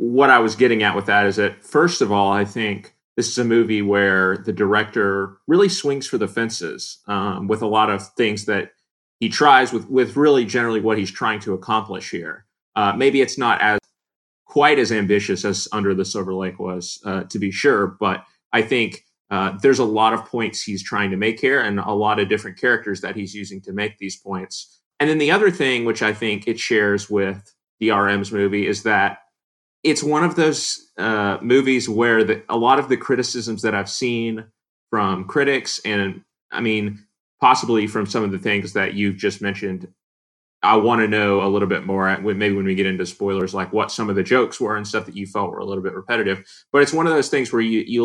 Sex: male